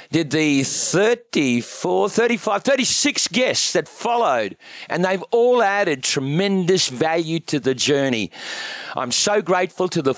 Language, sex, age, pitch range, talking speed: English, male, 40-59, 155-210 Hz, 130 wpm